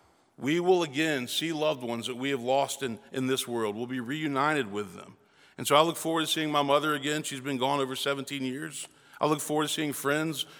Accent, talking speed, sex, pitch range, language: American, 230 wpm, male, 135-160 Hz, English